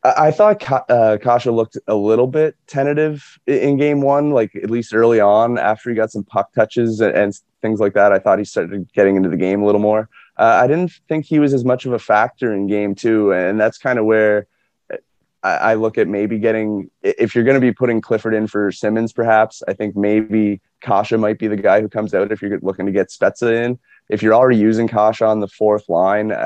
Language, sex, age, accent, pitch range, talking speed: English, male, 20-39, American, 100-120 Hz, 225 wpm